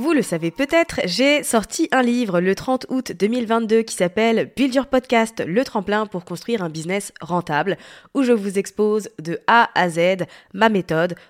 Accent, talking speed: French, 180 wpm